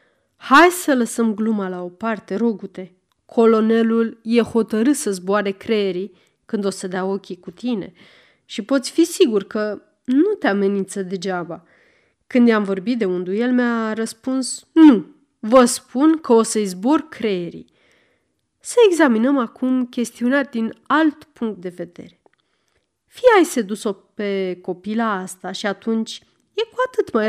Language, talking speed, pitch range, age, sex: Romanian, 145 wpm, 195-255 Hz, 30-49, female